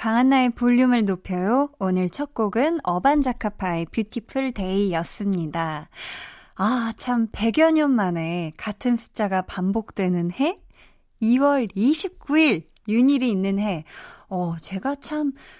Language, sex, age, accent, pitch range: Korean, female, 20-39, native, 180-260 Hz